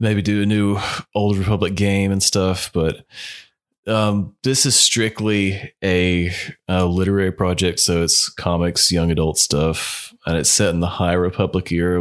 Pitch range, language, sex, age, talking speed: 80-100 Hz, English, male, 20-39, 160 wpm